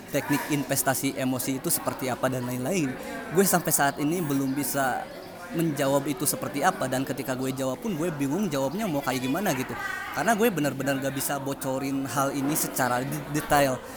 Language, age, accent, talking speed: Indonesian, 20-39, native, 170 wpm